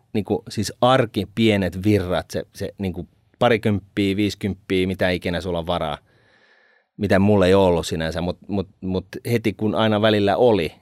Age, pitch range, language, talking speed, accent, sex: 30-49, 85-110 Hz, Finnish, 160 wpm, native, male